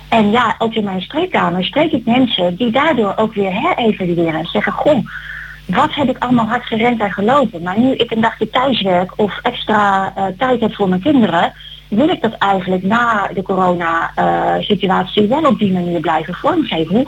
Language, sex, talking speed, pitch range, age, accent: Dutch, female, 190 wpm, 185-255 Hz, 30-49, Dutch